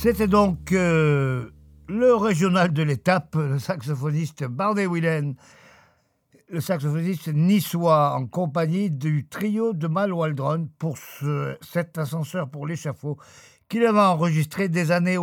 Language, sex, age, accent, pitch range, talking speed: French, male, 50-69, French, 140-180 Hz, 120 wpm